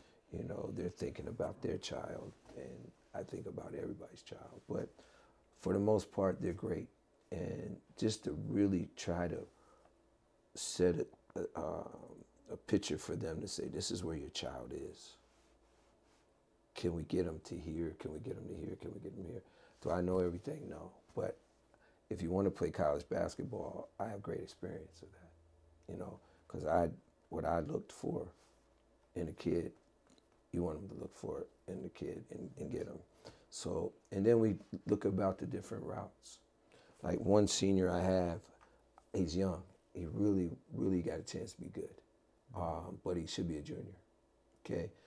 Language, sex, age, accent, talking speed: English, male, 50-69, American, 175 wpm